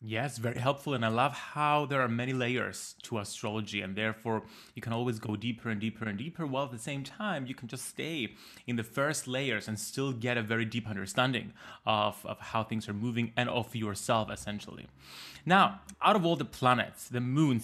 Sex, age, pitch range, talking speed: male, 20-39, 110-130 Hz, 210 wpm